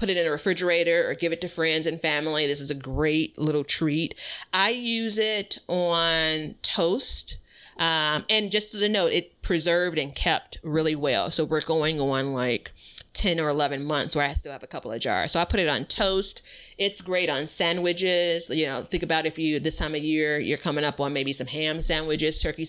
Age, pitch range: 30-49, 150-190 Hz